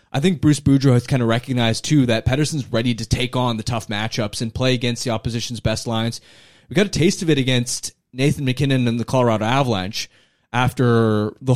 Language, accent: English, American